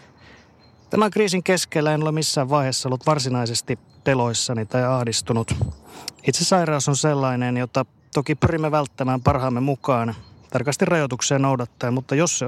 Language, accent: Finnish, native